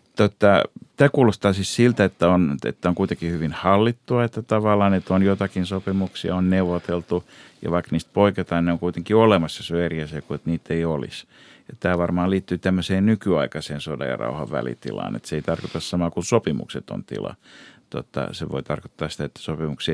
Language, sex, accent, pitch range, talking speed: Finnish, male, native, 80-100 Hz, 185 wpm